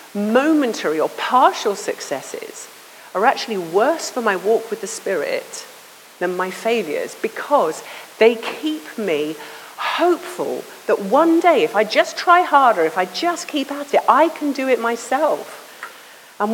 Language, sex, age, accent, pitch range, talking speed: English, female, 40-59, British, 190-310 Hz, 150 wpm